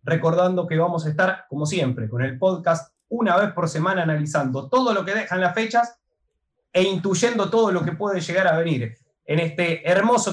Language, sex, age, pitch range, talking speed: Spanish, male, 20-39, 155-195 Hz, 190 wpm